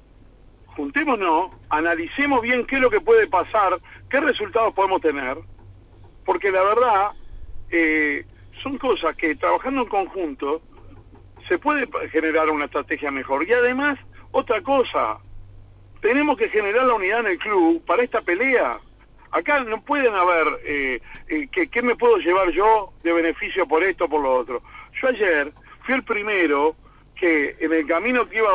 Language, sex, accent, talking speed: Spanish, male, Argentinian, 155 wpm